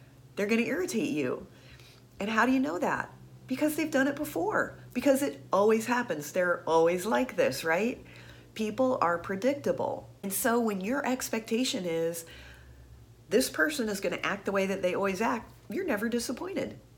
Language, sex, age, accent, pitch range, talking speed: English, female, 40-59, American, 150-210 Hz, 165 wpm